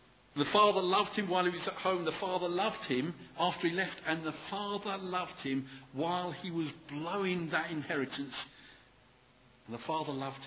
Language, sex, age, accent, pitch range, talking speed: English, male, 50-69, British, 125-165 Hz, 180 wpm